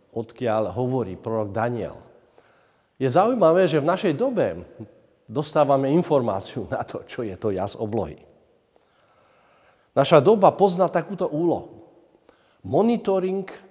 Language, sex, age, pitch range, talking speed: Slovak, male, 50-69, 125-185 Hz, 110 wpm